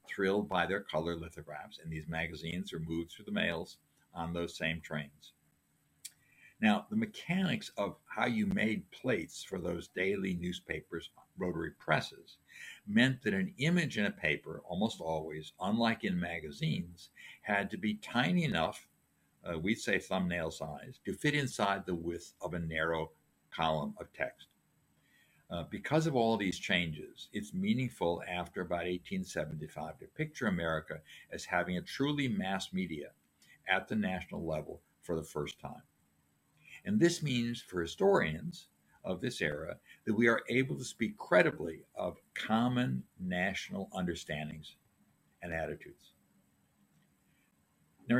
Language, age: English, 60-79